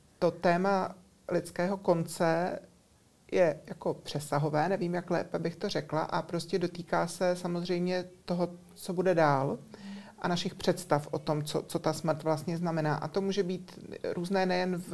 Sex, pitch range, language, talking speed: male, 150-180 Hz, Czech, 160 wpm